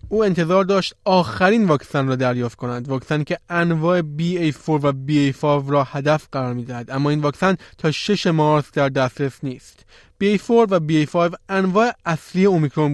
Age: 20-39